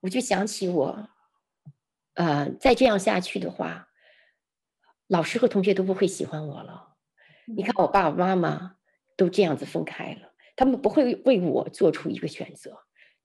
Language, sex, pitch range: Chinese, female, 155-220 Hz